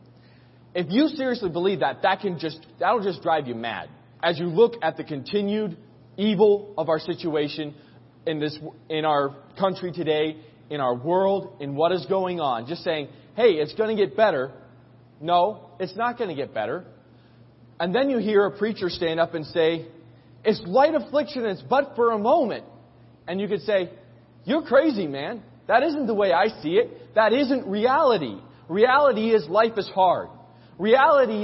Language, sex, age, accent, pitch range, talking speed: English, male, 20-39, American, 150-220 Hz, 175 wpm